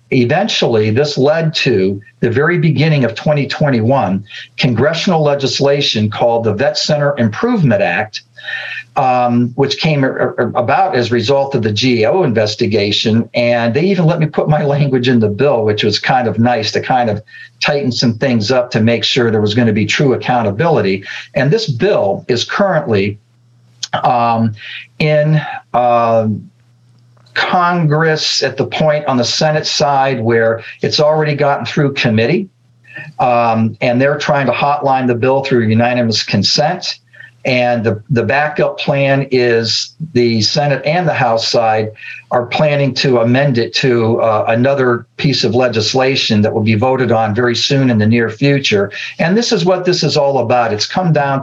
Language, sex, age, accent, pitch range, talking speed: English, male, 50-69, American, 115-145 Hz, 160 wpm